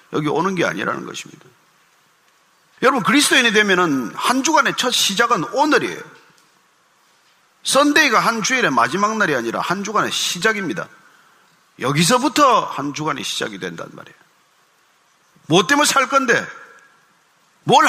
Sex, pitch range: male, 160-245 Hz